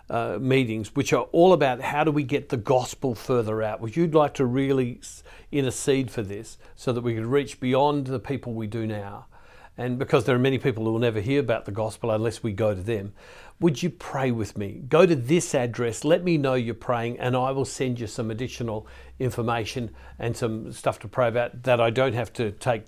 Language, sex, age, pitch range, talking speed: English, male, 50-69, 115-150 Hz, 225 wpm